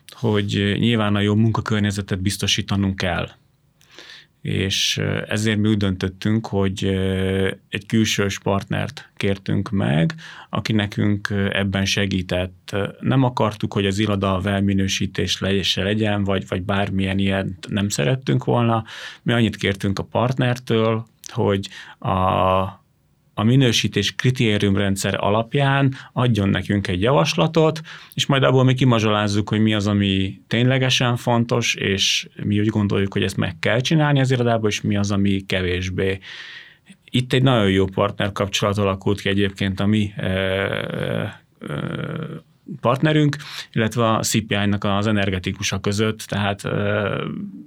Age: 30-49